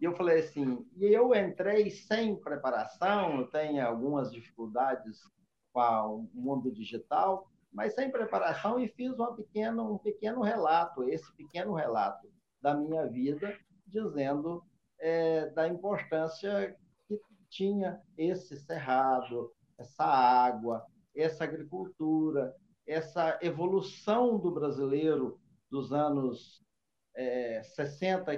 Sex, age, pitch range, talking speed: male, 50-69, 135-200 Hz, 110 wpm